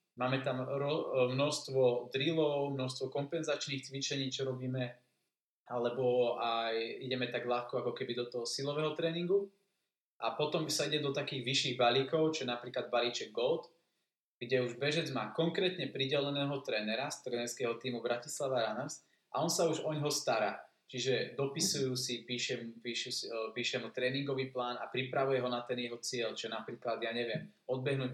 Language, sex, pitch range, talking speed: Slovak, male, 120-145 Hz, 150 wpm